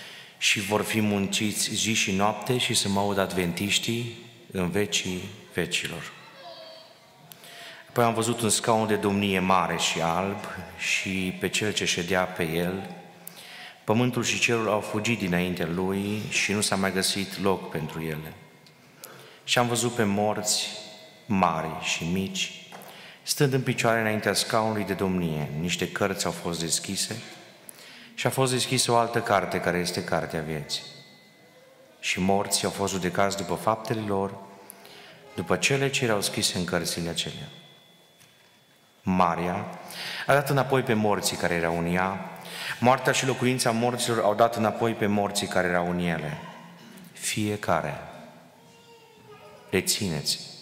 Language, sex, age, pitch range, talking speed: Romanian, male, 30-49, 90-110 Hz, 140 wpm